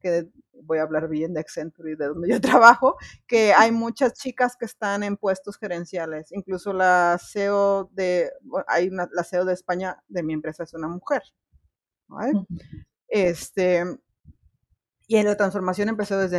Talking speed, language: 165 wpm, Spanish